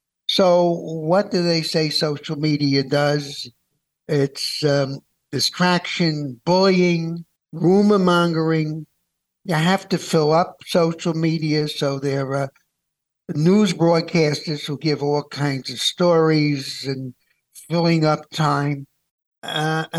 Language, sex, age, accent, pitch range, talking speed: English, male, 60-79, American, 140-170 Hz, 110 wpm